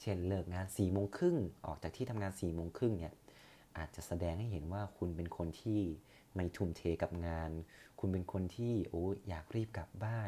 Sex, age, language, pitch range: male, 30-49, Thai, 85-110 Hz